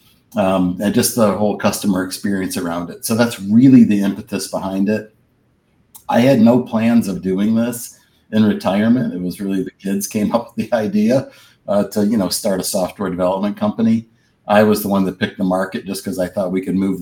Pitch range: 95-110 Hz